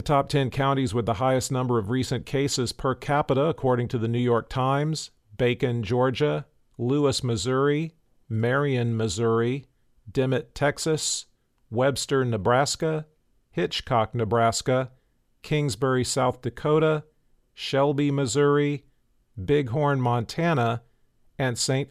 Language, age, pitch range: English, 50-69, 120-140 Hz